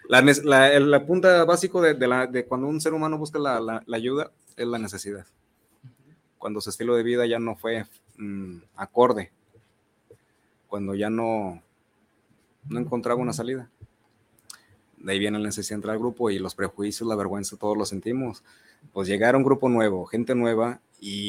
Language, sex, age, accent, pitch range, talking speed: Spanish, male, 30-49, Mexican, 105-125 Hz, 180 wpm